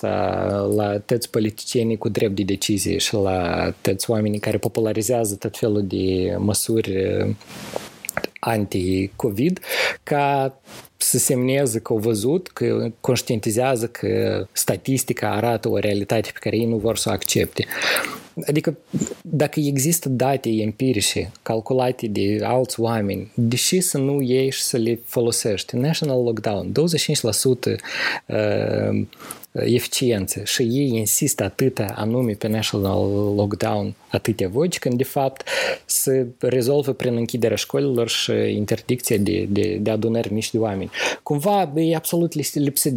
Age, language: 20-39, Romanian